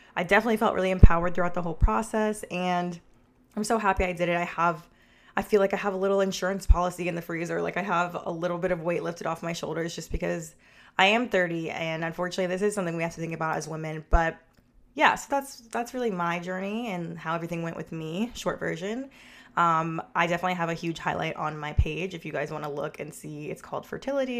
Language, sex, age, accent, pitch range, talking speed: English, female, 20-39, American, 160-195 Hz, 235 wpm